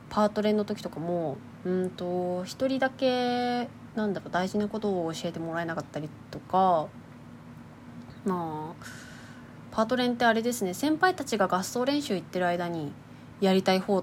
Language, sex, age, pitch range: Japanese, female, 20-39, 175-245 Hz